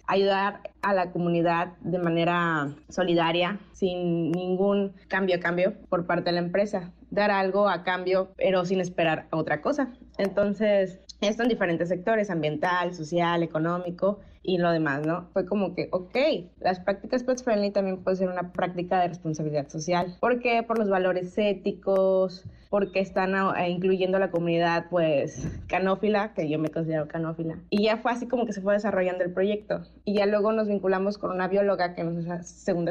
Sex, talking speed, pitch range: female, 175 wpm, 175-200 Hz